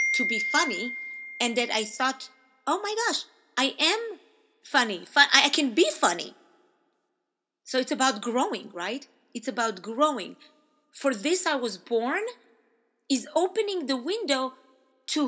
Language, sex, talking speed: English, female, 140 wpm